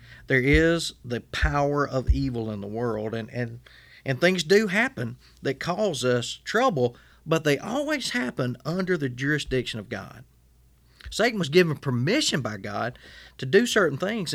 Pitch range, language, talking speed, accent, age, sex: 120-175 Hz, English, 160 wpm, American, 40-59, male